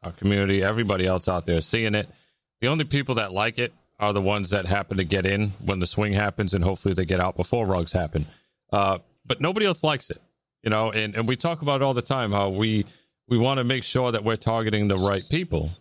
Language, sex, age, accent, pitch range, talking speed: English, male, 30-49, American, 95-115 Hz, 245 wpm